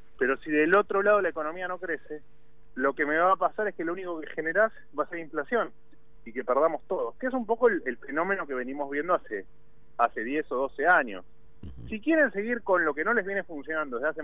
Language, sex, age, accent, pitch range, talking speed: Spanish, male, 30-49, Argentinian, 155-225 Hz, 240 wpm